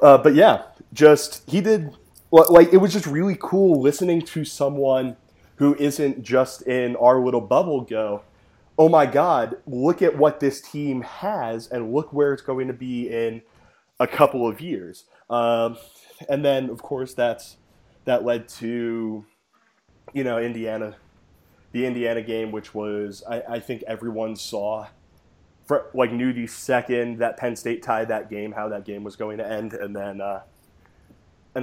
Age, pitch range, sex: 20-39, 110-140 Hz, male